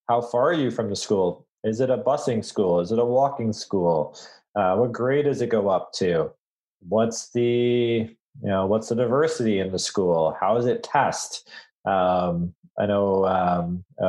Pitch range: 105-125 Hz